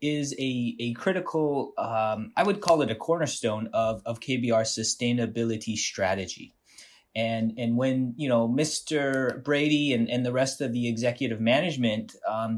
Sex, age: male, 30-49